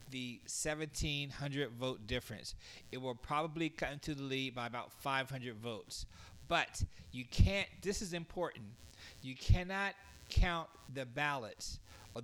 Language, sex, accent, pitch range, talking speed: English, male, American, 115-155 Hz, 130 wpm